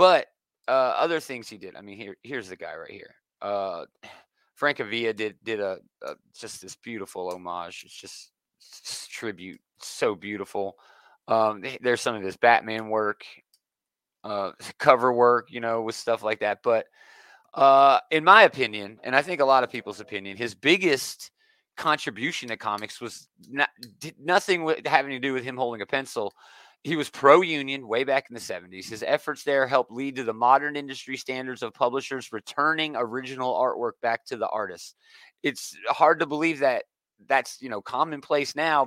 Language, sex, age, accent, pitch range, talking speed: English, male, 30-49, American, 110-145 Hz, 180 wpm